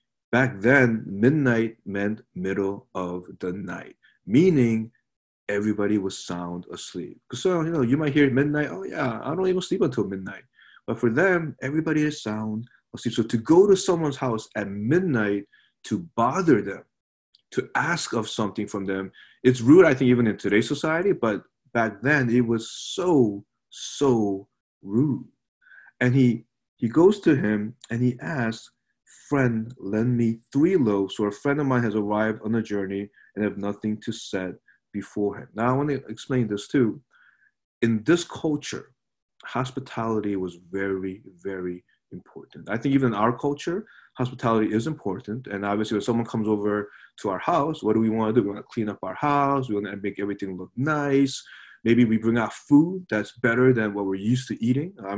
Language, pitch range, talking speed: English, 105-130 Hz, 180 wpm